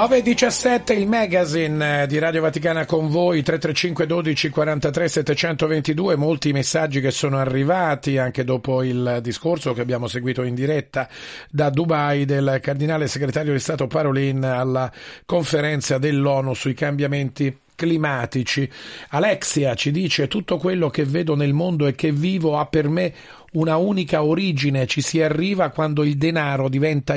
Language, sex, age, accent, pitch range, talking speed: Italian, male, 40-59, native, 135-165 Hz, 145 wpm